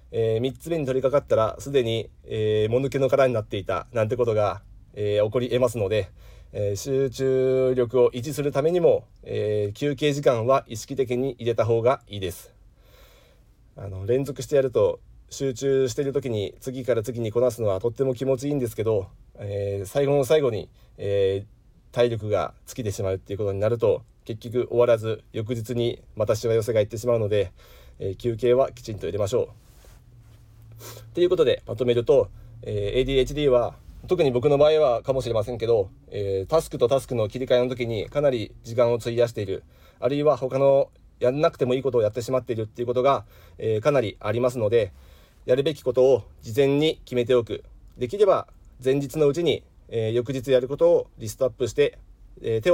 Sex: male